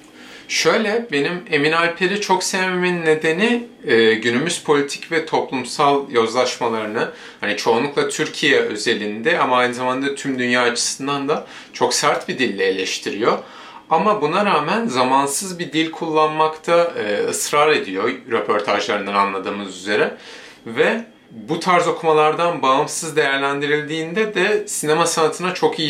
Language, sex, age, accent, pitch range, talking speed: Turkish, male, 30-49, native, 125-175 Hz, 120 wpm